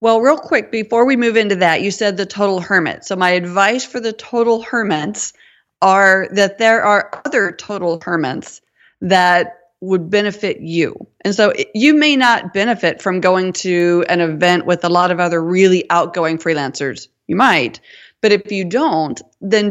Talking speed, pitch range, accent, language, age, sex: 175 wpm, 175-215 Hz, American, English, 30-49, female